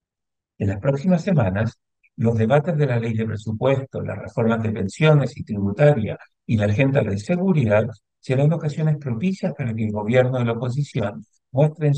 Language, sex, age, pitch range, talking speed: Spanish, male, 50-69, 110-145 Hz, 165 wpm